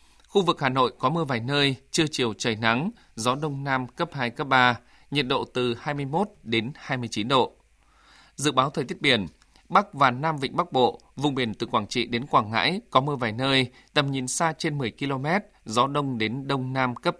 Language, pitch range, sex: Vietnamese, 125-160 Hz, male